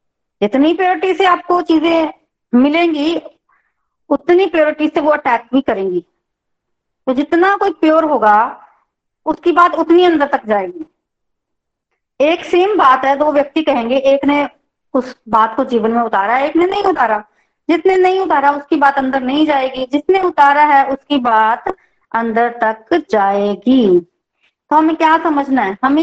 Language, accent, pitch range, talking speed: Hindi, native, 260-330 Hz, 150 wpm